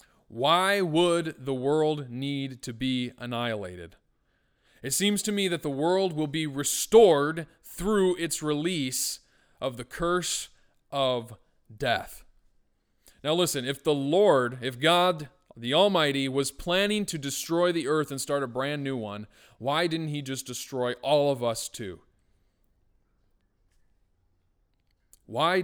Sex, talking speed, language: male, 135 wpm, English